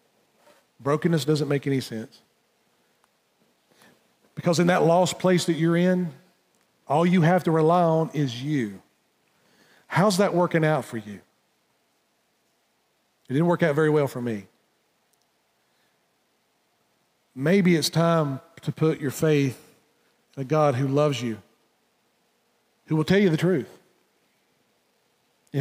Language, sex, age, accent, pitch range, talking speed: English, male, 40-59, American, 140-175 Hz, 130 wpm